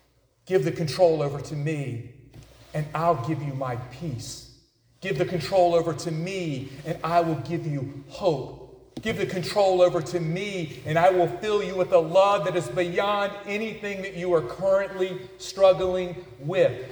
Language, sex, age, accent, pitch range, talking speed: English, male, 40-59, American, 155-200 Hz, 170 wpm